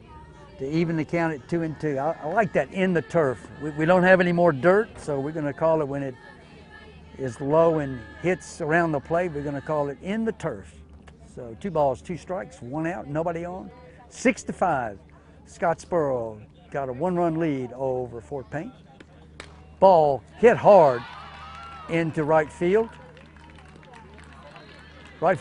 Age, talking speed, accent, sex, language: 60-79, 170 wpm, American, male, English